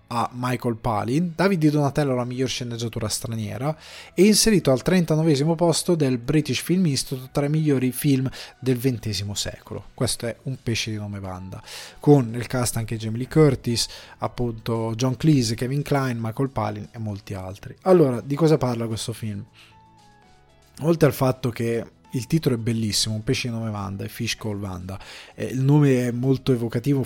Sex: male